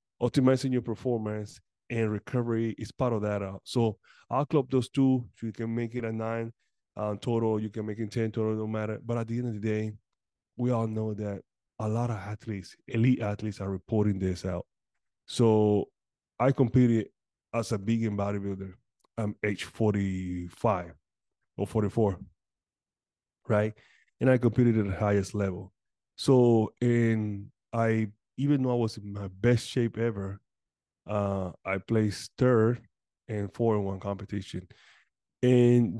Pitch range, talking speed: 105-120 Hz, 155 wpm